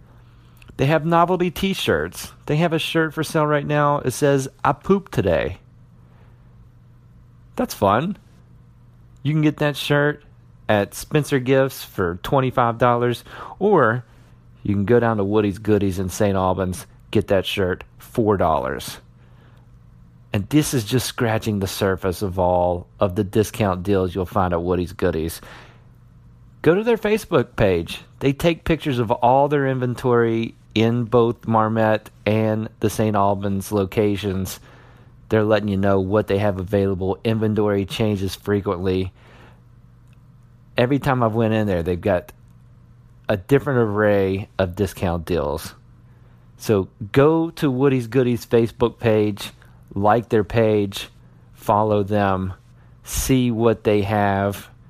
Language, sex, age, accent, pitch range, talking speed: English, male, 40-59, American, 100-125 Hz, 135 wpm